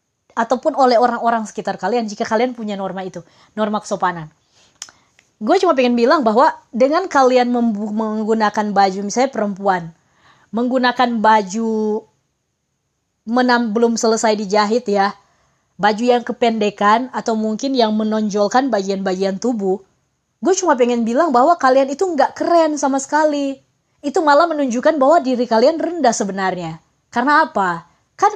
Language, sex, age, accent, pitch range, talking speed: Indonesian, female, 20-39, native, 200-270 Hz, 130 wpm